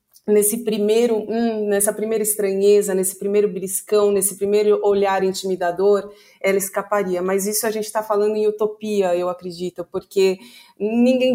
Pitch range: 200-235 Hz